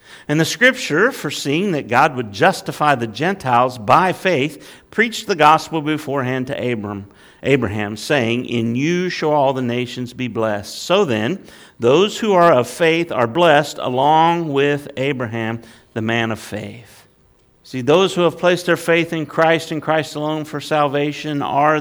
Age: 50-69